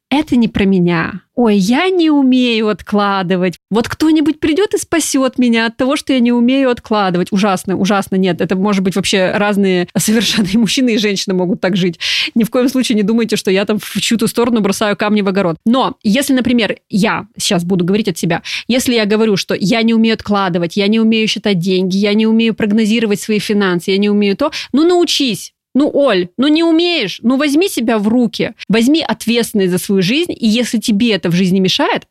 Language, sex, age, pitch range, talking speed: Russian, female, 20-39, 195-255 Hz, 205 wpm